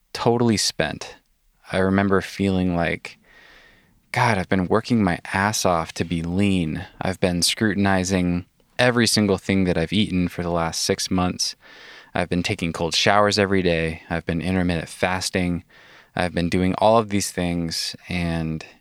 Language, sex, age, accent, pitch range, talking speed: English, male, 20-39, American, 90-100 Hz, 155 wpm